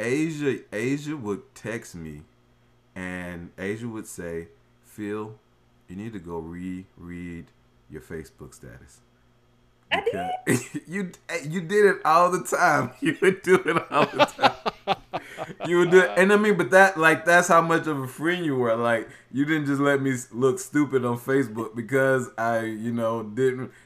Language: English